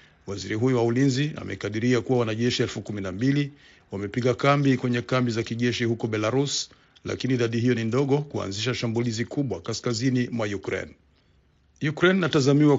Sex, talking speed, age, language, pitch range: male, 135 wpm, 50-69, Swahili, 115-135 Hz